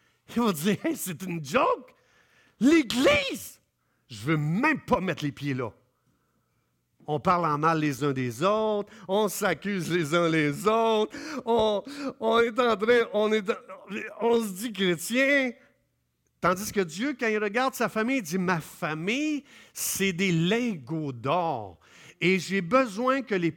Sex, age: male, 50-69